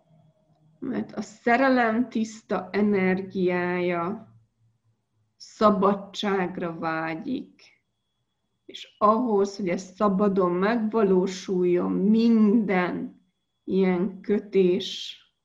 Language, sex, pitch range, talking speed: Hungarian, female, 135-210 Hz, 60 wpm